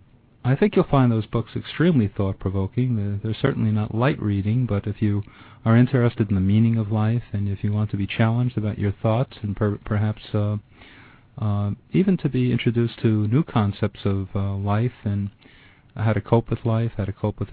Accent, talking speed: American, 195 wpm